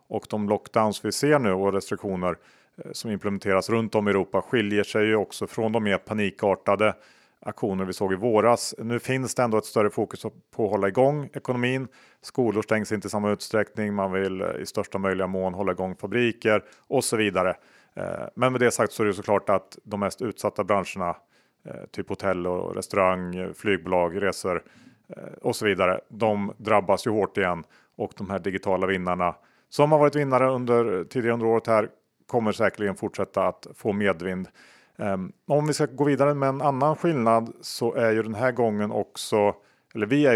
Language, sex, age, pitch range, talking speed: Swedish, male, 40-59, 100-120 Hz, 185 wpm